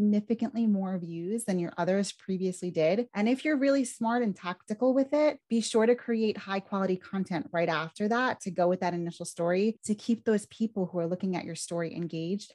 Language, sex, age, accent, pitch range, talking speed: English, female, 30-49, American, 185-230 Hz, 210 wpm